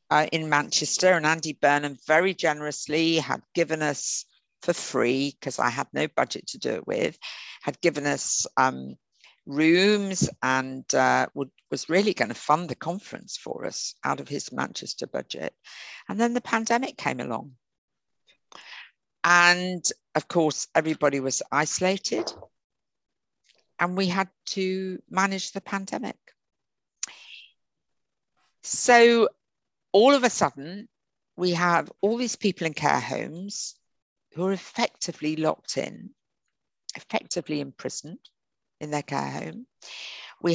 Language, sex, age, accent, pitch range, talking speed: English, female, 50-69, British, 150-195 Hz, 130 wpm